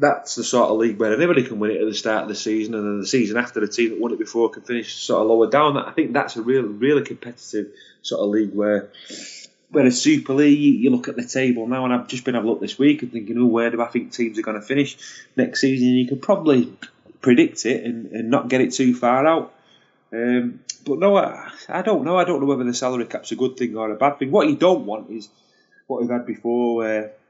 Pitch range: 105-125 Hz